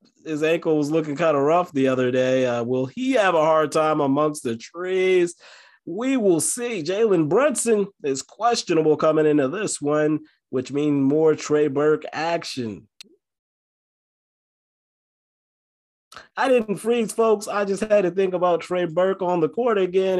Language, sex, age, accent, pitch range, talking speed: English, male, 20-39, American, 145-195 Hz, 155 wpm